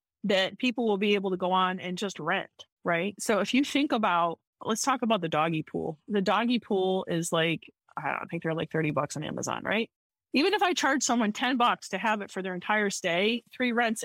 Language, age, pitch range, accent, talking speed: English, 30-49, 180-220 Hz, American, 230 wpm